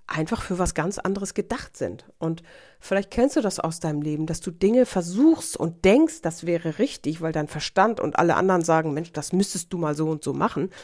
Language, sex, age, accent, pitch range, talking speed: German, female, 50-69, German, 180-240 Hz, 220 wpm